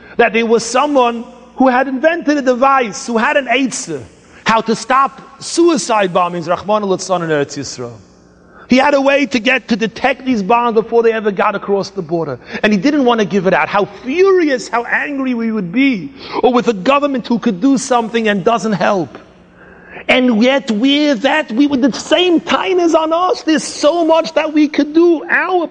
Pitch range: 210-310 Hz